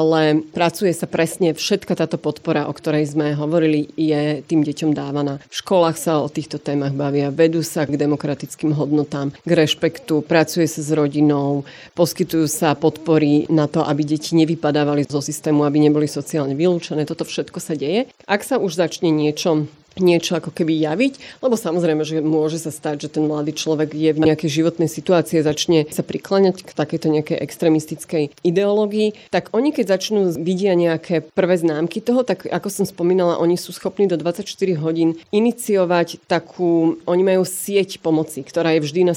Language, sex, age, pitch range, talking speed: Slovak, female, 30-49, 155-180 Hz, 170 wpm